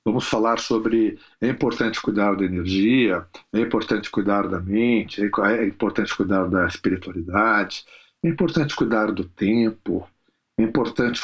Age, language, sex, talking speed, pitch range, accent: 50-69, Portuguese, male, 135 wpm, 105-145 Hz, Brazilian